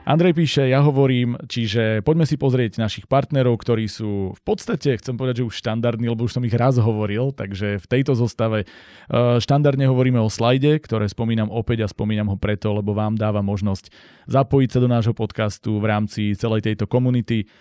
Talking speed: 185 wpm